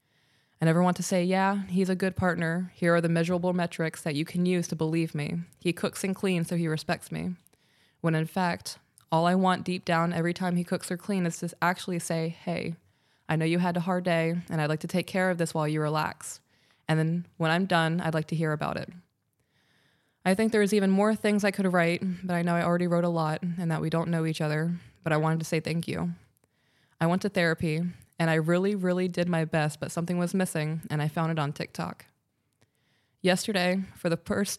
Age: 20-39